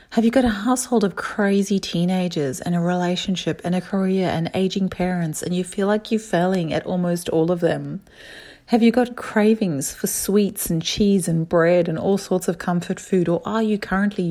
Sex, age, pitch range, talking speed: female, 40-59, 170-200 Hz, 200 wpm